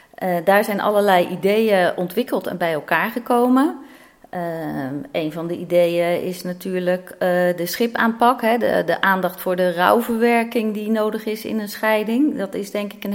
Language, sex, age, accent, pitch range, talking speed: Dutch, female, 40-59, Dutch, 175-220 Hz, 170 wpm